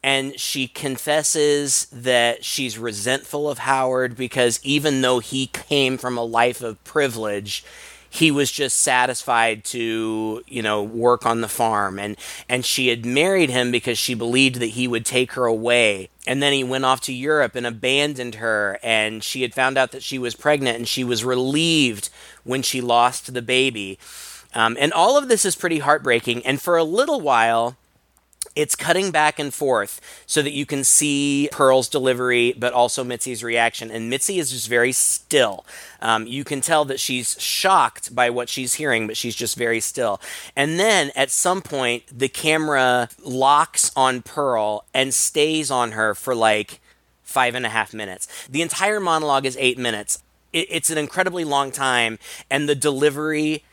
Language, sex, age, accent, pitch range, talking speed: English, male, 30-49, American, 115-145 Hz, 175 wpm